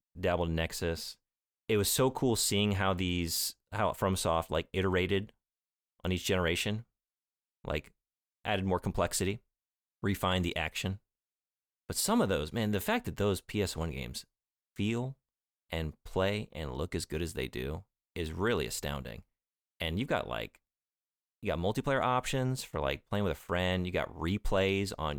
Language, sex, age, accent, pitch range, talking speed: English, male, 30-49, American, 80-100 Hz, 155 wpm